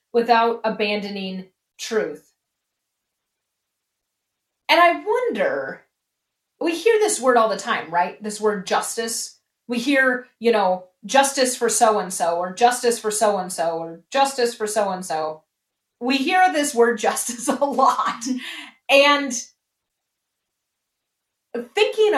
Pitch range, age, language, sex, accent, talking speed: 200-255 Hz, 30-49, English, female, American, 110 wpm